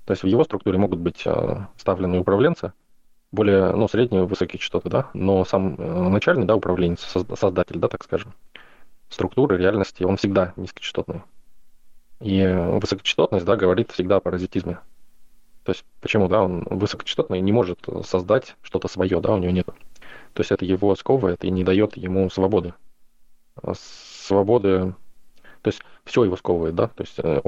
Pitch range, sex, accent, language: 90-100 Hz, male, native, Russian